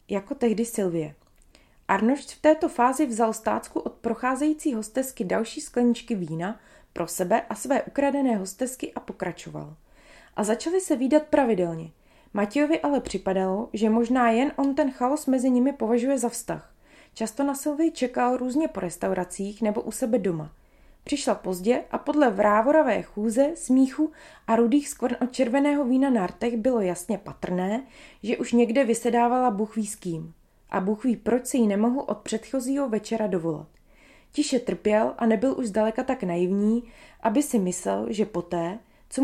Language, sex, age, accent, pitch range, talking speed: Czech, female, 20-39, native, 205-270 Hz, 155 wpm